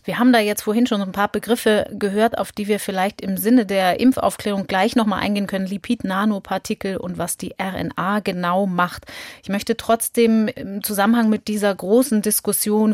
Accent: German